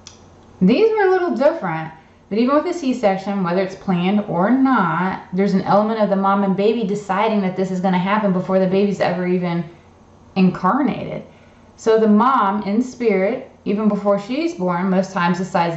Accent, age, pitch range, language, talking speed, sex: American, 20-39, 180-220 Hz, English, 185 wpm, female